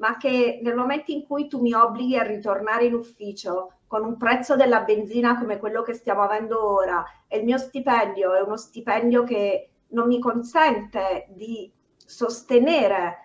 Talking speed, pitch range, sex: 170 wpm, 210-250 Hz, female